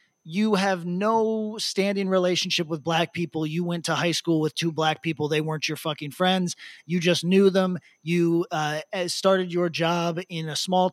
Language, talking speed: English, 185 wpm